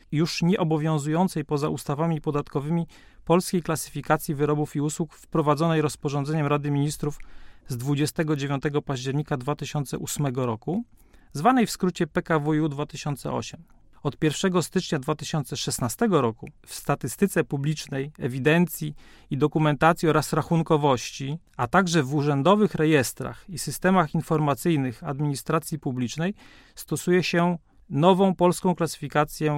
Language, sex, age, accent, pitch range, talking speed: Polish, male, 40-59, native, 145-170 Hz, 105 wpm